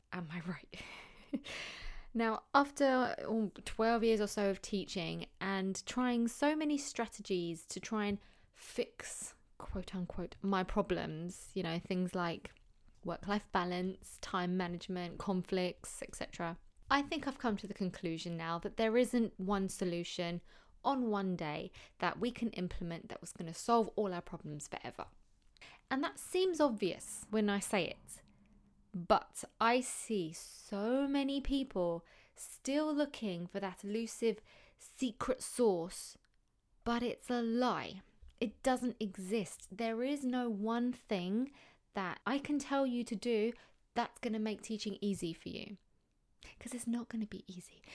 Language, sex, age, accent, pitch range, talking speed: English, female, 20-39, British, 185-235 Hz, 150 wpm